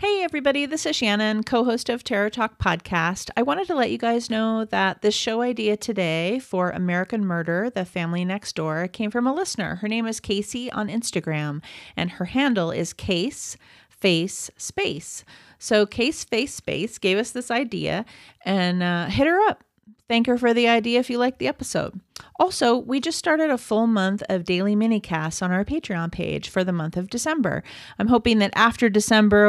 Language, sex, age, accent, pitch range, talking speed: English, female, 30-49, American, 185-240 Hz, 190 wpm